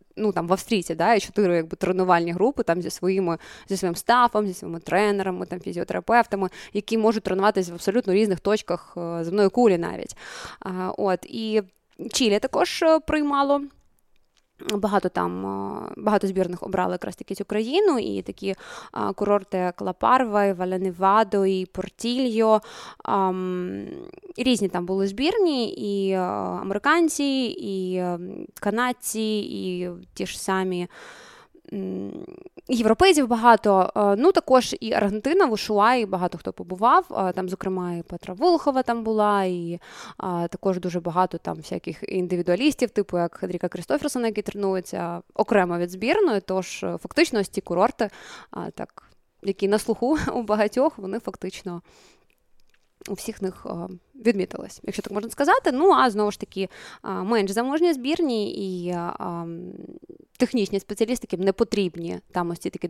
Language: Russian